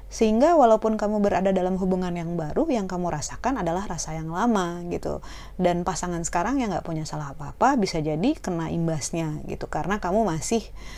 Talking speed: 175 wpm